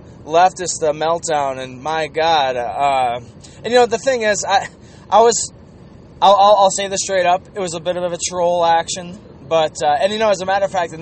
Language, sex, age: English, male, 20-39